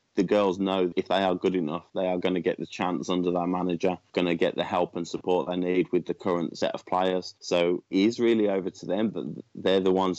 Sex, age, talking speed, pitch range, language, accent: male, 20-39, 260 wpm, 90-95 Hz, English, British